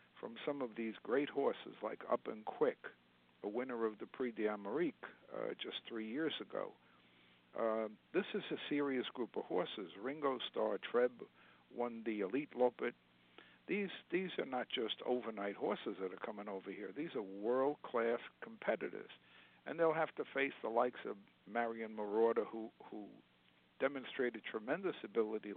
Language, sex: English, male